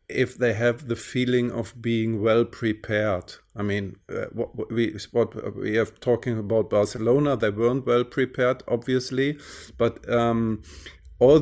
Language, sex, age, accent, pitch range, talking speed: English, male, 50-69, German, 110-125 Hz, 150 wpm